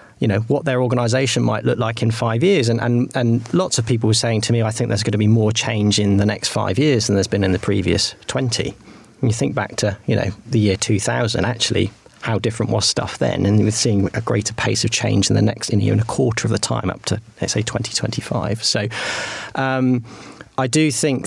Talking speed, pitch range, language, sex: 240 wpm, 105-120 Hz, English, male